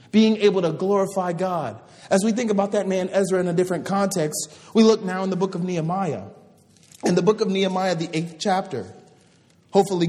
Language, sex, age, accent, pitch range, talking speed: English, male, 30-49, American, 170-200 Hz, 195 wpm